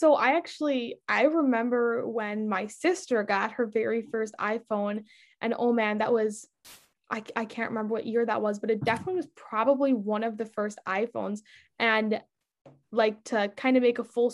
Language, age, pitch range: English, 10-29, 210-245 Hz